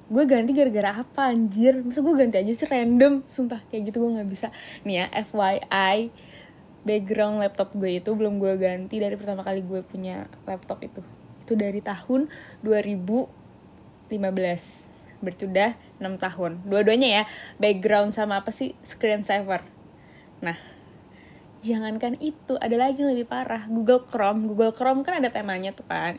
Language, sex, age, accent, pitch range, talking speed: Indonesian, female, 10-29, native, 195-240 Hz, 150 wpm